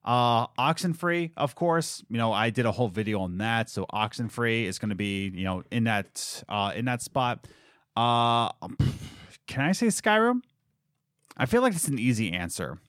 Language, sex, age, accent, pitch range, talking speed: English, male, 30-49, American, 110-155 Hz, 190 wpm